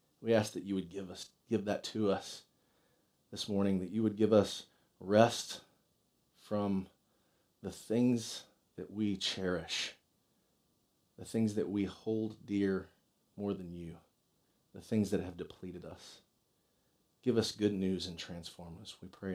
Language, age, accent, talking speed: English, 40-59, American, 150 wpm